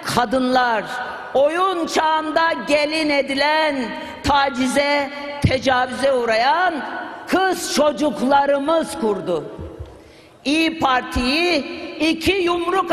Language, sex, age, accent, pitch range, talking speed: Turkish, female, 50-69, native, 270-330 Hz, 70 wpm